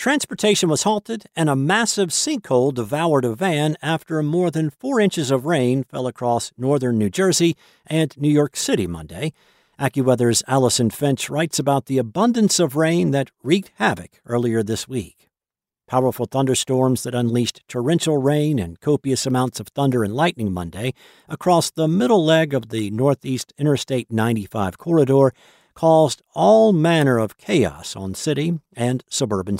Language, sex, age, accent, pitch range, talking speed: English, male, 50-69, American, 120-155 Hz, 150 wpm